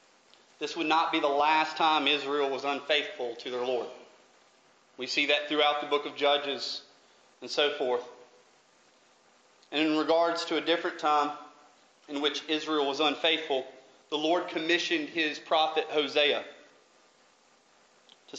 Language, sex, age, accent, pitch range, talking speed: English, male, 40-59, American, 140-175 Hz, 140 wpm